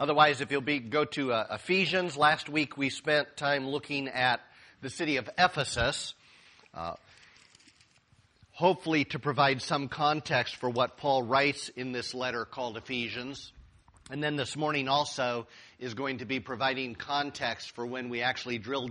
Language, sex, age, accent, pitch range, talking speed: English, male, 50-69, American, 115-145 Hz, 160 wpm